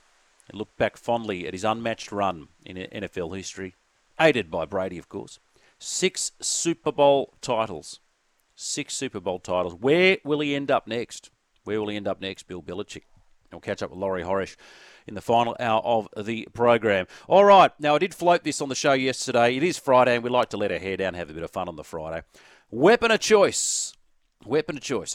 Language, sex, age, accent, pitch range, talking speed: English, male, 40-59, Australian, 95-150 Hz, 210 wpm